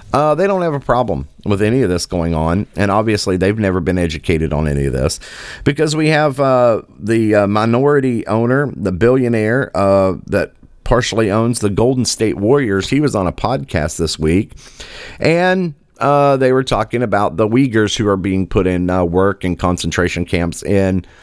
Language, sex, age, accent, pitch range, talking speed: English, male, 40-59, American, 90-130 Hz, 185 wpm